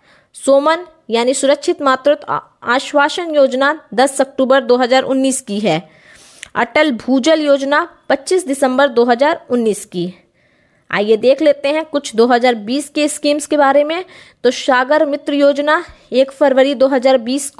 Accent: native